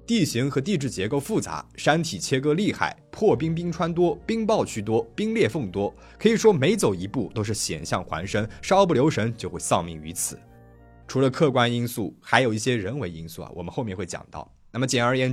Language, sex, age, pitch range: Chinese, male, 20-39, 95-140 Hz